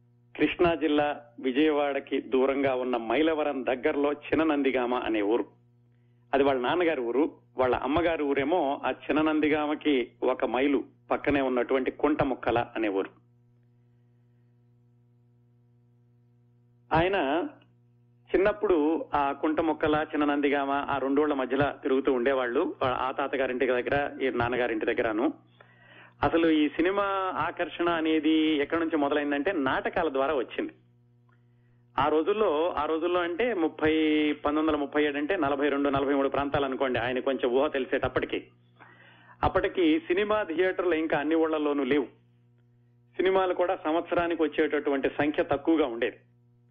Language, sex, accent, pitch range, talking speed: Telugu, male, native, 120-155 Hz, 115 wpm